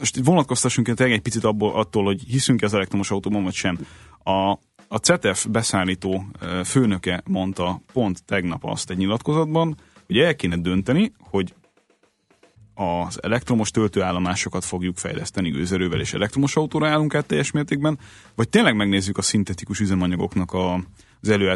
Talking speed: 135 wpm